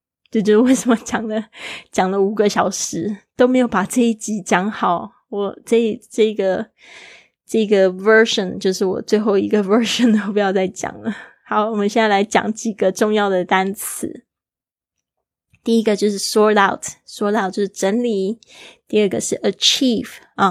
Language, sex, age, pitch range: Chinese, female, 20-39, 195-230 Hz